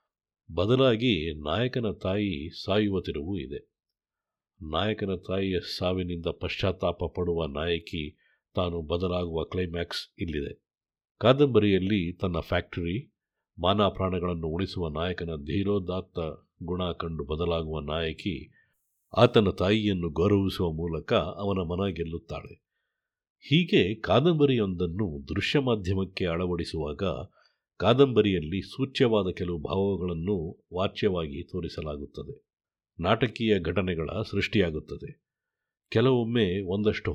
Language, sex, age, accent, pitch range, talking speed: Kannada, male, 50-69, native, 85-105 Hz, 80 wpm